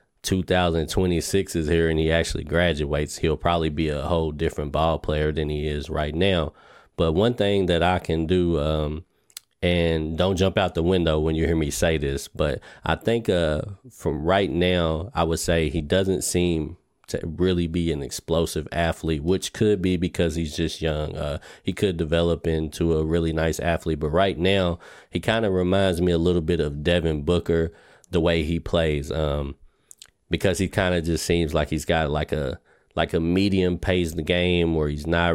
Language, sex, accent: English, male, American